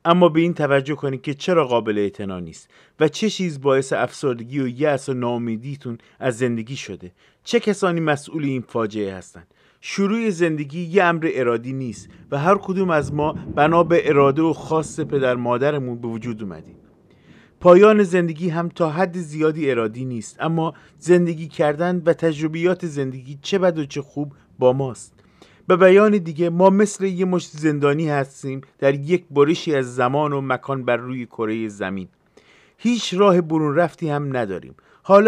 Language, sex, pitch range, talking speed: Persian, male, 125-170 Hz, 165 wpm